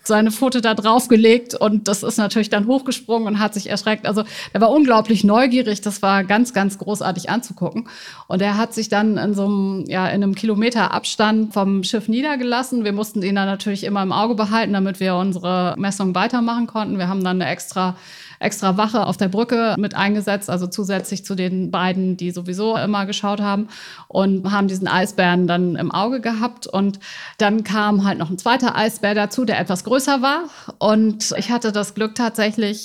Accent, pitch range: German, 195-225 Hz